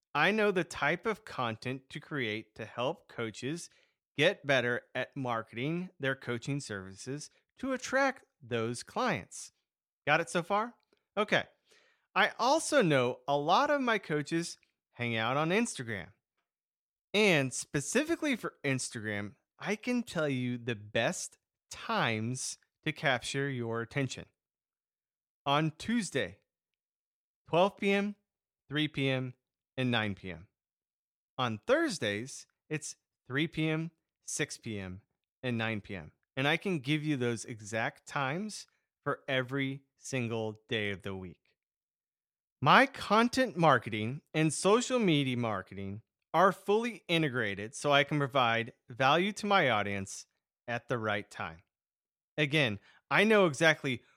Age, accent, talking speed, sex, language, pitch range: 30-49, American, 125 wpm, male, English, 115-175 Hz